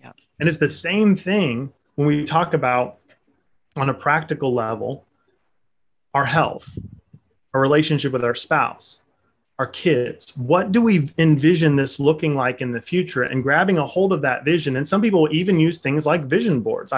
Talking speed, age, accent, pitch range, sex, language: 170 wpm, 30-49, American, 145-180 Hz, male, English